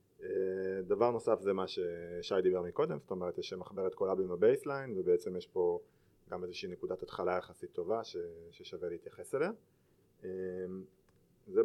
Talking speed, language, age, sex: 135 wpm, Hebrew, 30-49, male